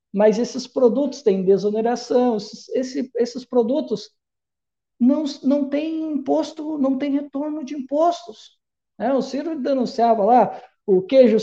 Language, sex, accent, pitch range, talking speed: Portuguese, male, Brazilian, 215-280 Hz, 130 wpm